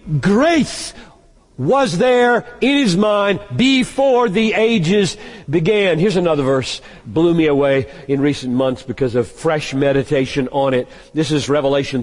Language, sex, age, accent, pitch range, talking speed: English, male, 50-69, American, 140-235 Hz, 140 wpm